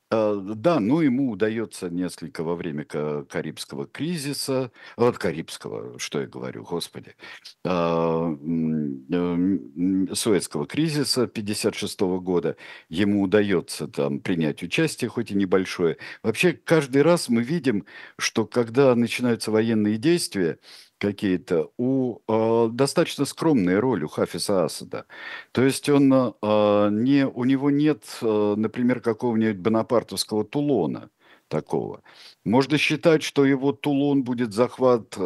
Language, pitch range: Russian, 90-130 Hz